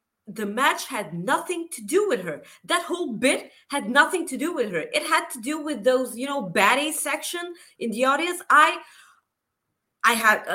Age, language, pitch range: 30-49, English, 210-290 Hz